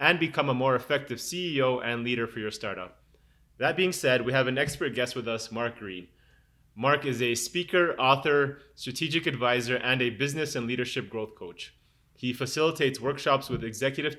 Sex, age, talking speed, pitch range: male, 30-49, 180 wpm, 115-140 Hz